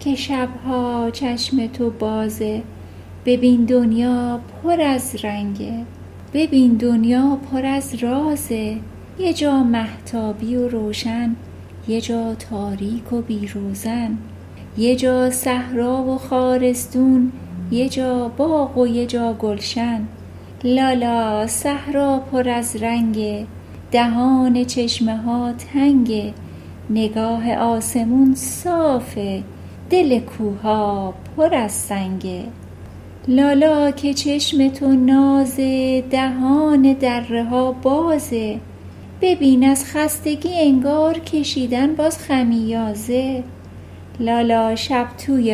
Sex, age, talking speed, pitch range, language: female, 30-49, 95 wpm, 220-270 Hz, Persian